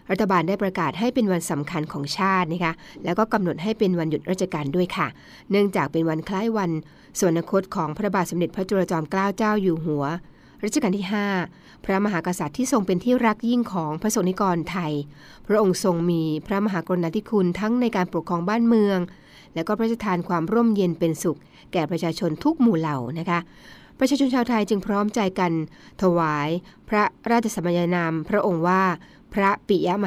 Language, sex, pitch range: Thai, female, 170-215 Hz